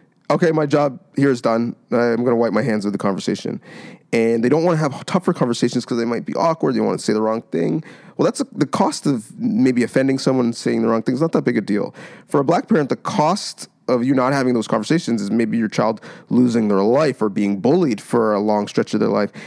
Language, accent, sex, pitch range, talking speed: English, American, male, 115-170 Hz, 255 wpm